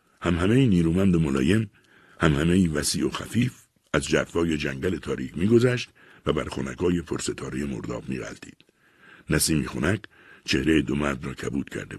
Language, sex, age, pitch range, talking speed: Persian, male, 60-79, 75-95 Hz, 145 wpm